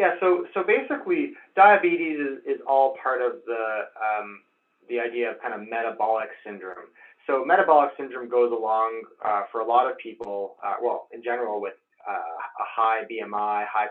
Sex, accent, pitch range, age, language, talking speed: male, American, 110-160 Hz, 20-39, English, 175 wpm